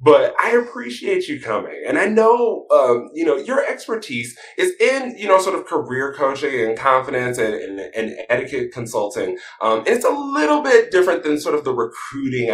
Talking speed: 180 wpm